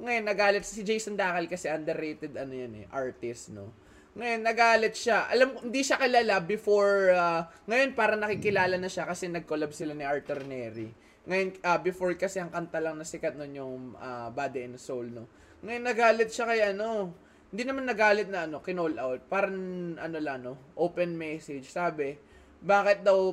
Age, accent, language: 20-39, native, Filipino